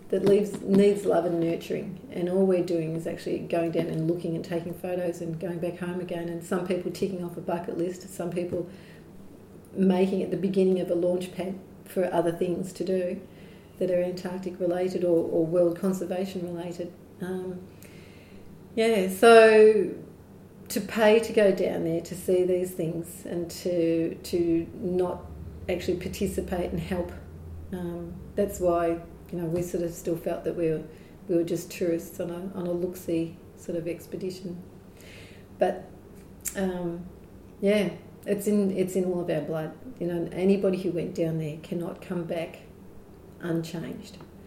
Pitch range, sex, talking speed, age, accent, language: 170-185 Hz, female, 170 wpm, 40-59, Australian, English